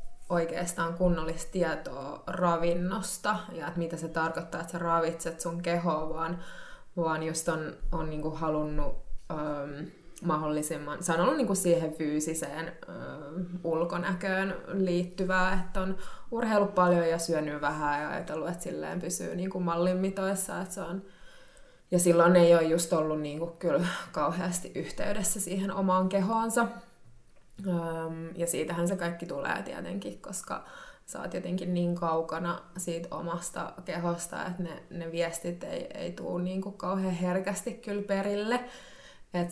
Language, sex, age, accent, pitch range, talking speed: Finnish, female, 20-39, native, 165-185 Hz, 135 wpm